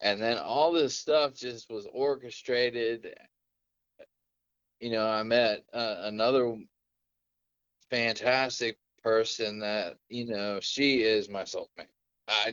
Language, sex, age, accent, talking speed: English, male, 20-39, American, 115 wpm